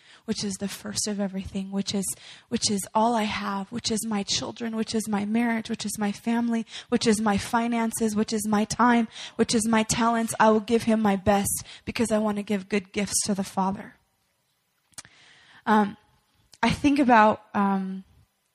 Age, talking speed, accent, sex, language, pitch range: 20-39, 190 wpm, American, female, English, 195-225 Hz